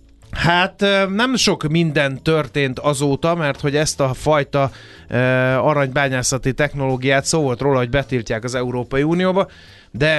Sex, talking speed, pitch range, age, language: male, 130 wpm, 115-155 Hz, 30-49, Hungarian